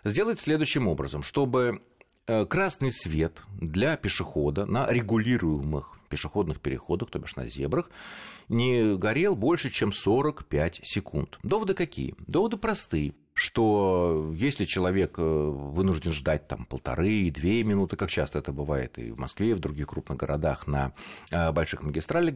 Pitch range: 75-105 Hz